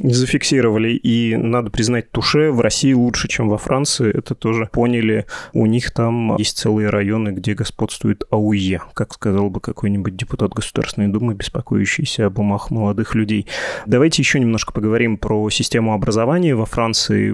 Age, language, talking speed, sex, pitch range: 20-39, Russian, 150 wpm, male, 110-130 Hz